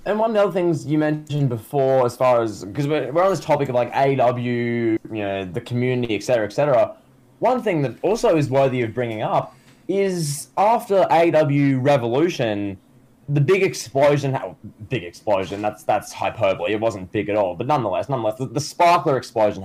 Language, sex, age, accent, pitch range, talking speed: English, male, 10-29, Australian, 125-160 Hz, 190 wpm